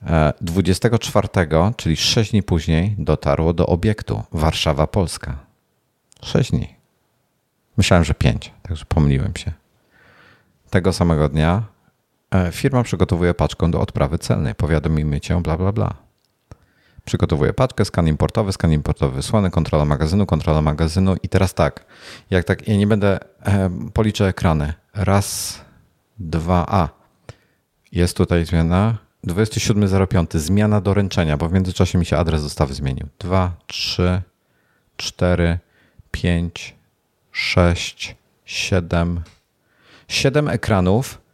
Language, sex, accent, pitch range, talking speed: Polish, male, native, 85-105 Hz, 115 wpm